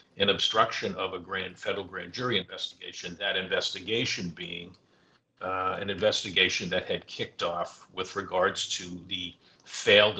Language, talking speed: English, 140 wpm